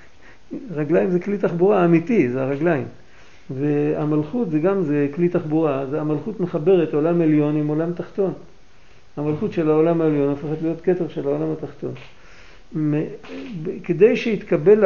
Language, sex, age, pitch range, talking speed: Hebrew, male, 50-69, 155-185 Hz, 125 wpm